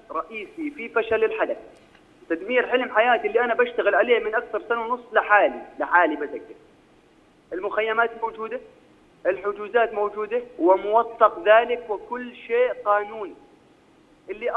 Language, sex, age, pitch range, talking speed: Arabic, male, 30-49, 205-310 Hz, 115 wpm